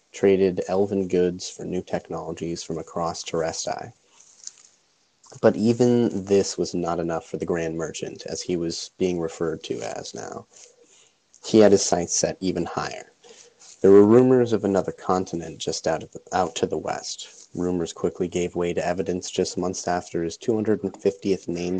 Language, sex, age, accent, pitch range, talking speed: English, male, 30-49, American, 85-105 Hz, 165 wpm